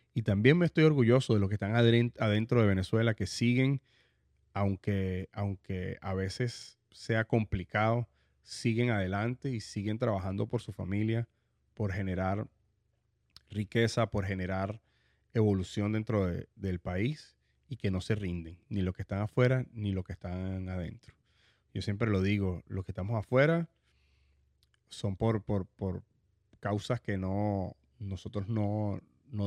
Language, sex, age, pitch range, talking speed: Spanish, male, 30-49, 95-115 Hz, 145 wpm